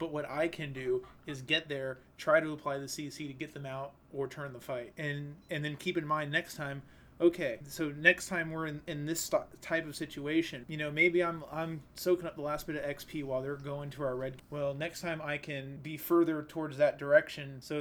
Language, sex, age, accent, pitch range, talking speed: English, male, 30-49, American, 140-160 Hz, 235 wpm